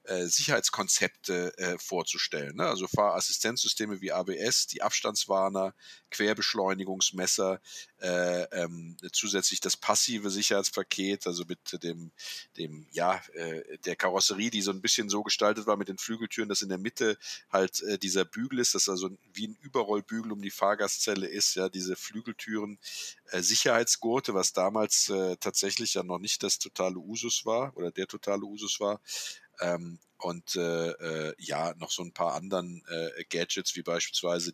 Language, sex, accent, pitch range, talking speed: German, male, German, 85-105 Hz, 155 wpm